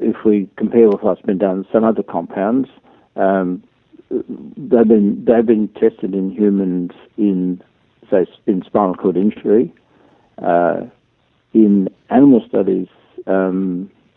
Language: English